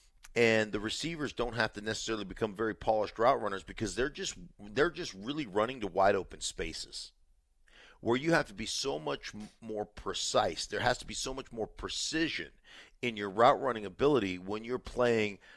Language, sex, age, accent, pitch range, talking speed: English, male, 50-69, American, 100-120 Hz, 185 wpm